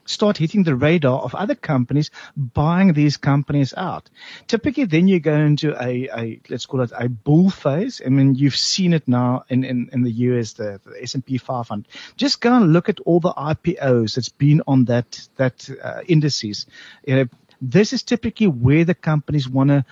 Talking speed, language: 195 wpm, English